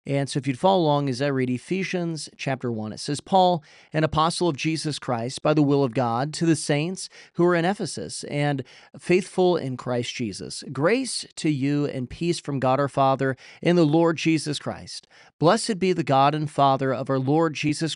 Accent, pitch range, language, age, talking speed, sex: American, 135-170 Hz, English, 40-59, 205 wpm, male